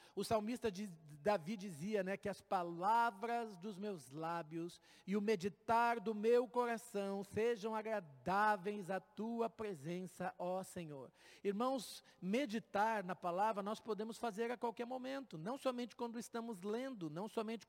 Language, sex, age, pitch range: Portuguese, male, 50-69, 190-235 Hz